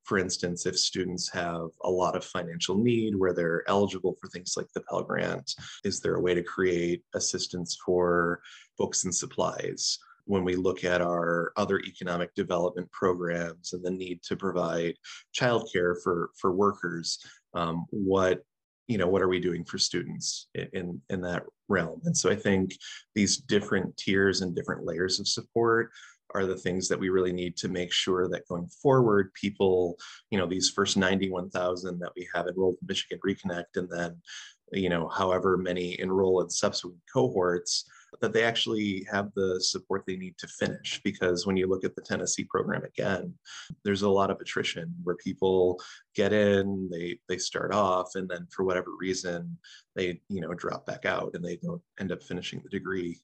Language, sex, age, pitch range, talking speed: English, male, 20-39, 90-95 Hz, 180 wpm